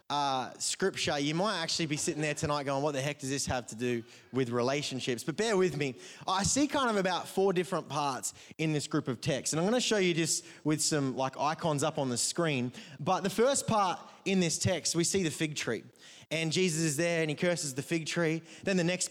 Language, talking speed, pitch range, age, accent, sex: English, 240 wpm, 155-190 Hz, 20-39, Australian, male